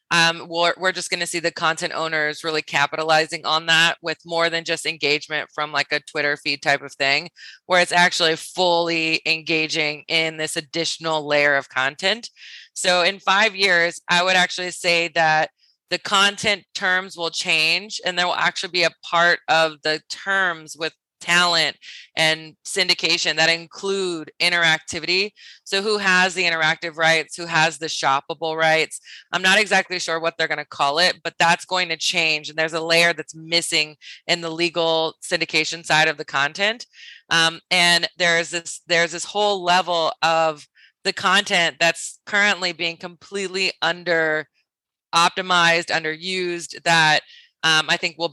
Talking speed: 165 wpm